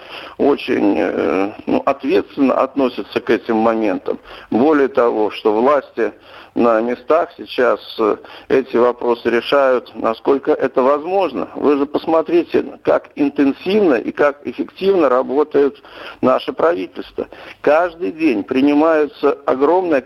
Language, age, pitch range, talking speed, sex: Russian, 60-79, 135-175 Hz, 105 wpm, male